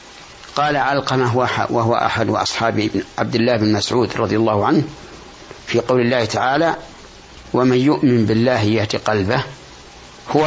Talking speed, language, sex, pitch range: 125 wpm, Arabic, male, 115-145 Hz